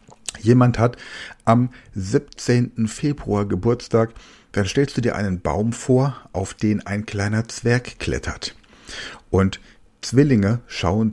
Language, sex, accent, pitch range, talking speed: German, male, German, 95-125 Hz, 120 wpm